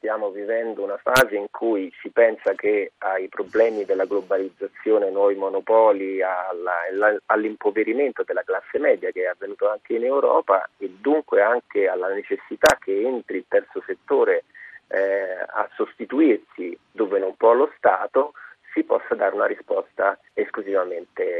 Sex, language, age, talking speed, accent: male, Italian, 30-49, 135 wpm, native